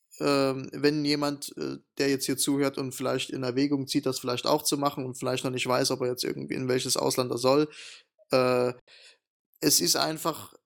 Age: 20-39